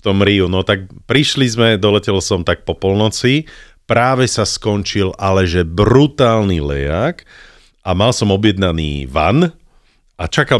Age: 40-59